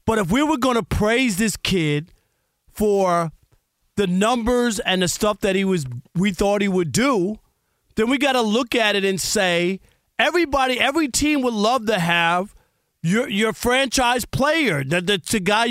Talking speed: 180 wpm